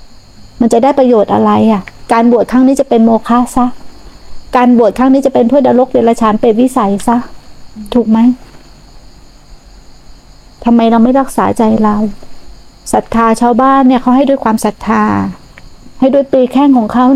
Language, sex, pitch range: Thai, female, 235-280 Hz